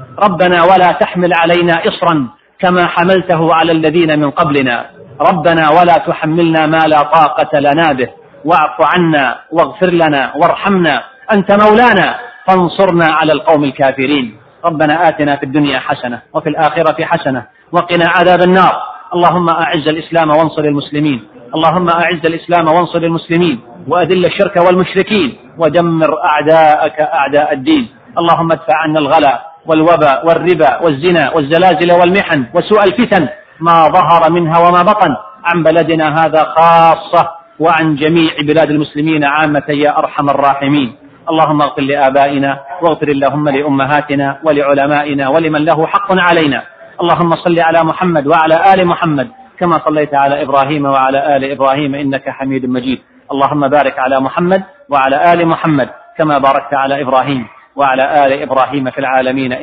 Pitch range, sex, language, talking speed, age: 140-170 Hz, male, Arabic, 130 wpm, 40-59